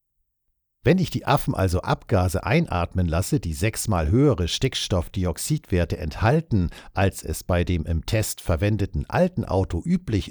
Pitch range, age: 90-125 Hz, 60-79